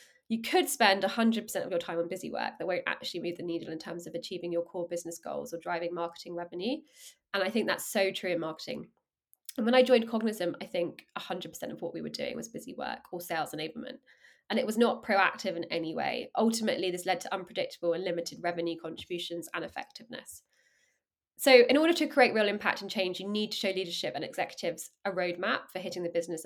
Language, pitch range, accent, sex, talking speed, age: English, 175-230 Hz, British, female, 220 wpm, 20-39